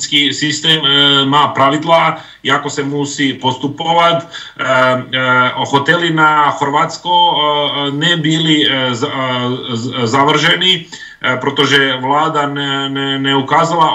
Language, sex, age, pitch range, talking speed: Slovak, male, 40-59, 140-160 Hz, 85 wpm